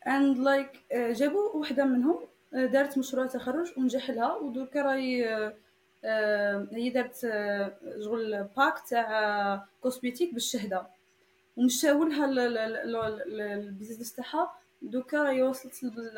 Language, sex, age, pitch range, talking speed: English, female, 20-39, 225-275 Hz, 50 wpm